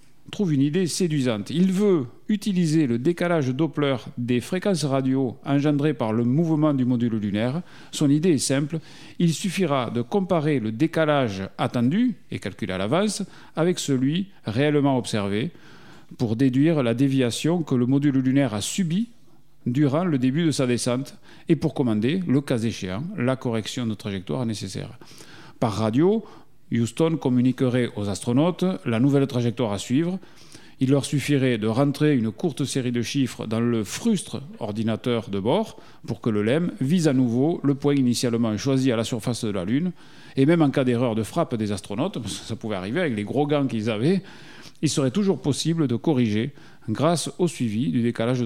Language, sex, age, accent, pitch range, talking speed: French, male, 40-59, French, 120-160 Hz, 170 wpm